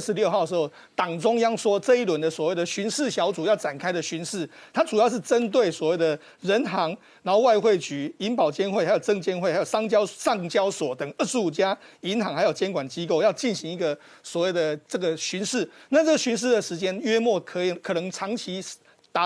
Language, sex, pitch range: Chinese, male, 170-230 Hz